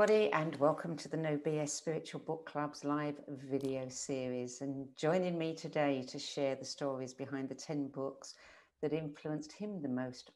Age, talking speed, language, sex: 50-69, 170 wpm, English, female